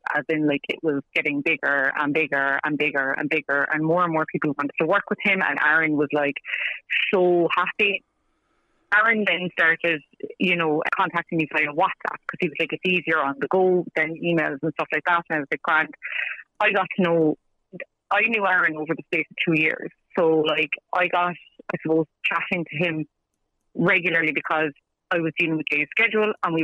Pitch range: 155-195 Hz